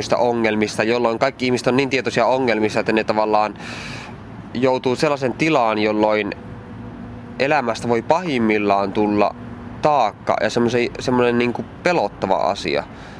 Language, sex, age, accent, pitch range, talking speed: Finnish, male, 20-39, native, 110-135 Hz, 125 wpm